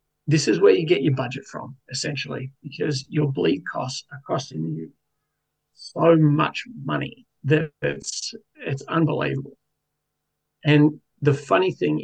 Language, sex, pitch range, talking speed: English, male, 140-155 Hz, 135 wpm